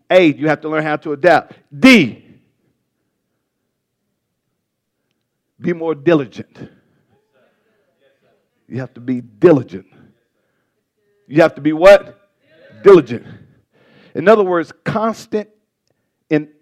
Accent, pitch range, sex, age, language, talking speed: American, 150-200 Hz, male, 50-69, English, 100 wpm